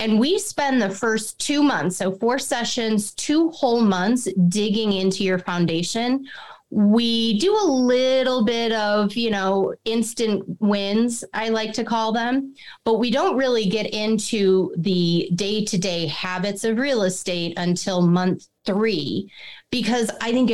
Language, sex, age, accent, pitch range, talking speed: English, female, 30-49, American, 190-235 Hz, 145 wpm